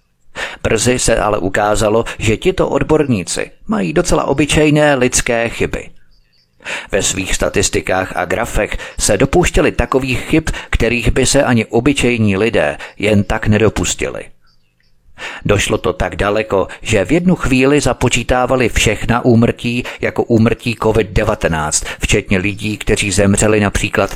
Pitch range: 100-125 Hz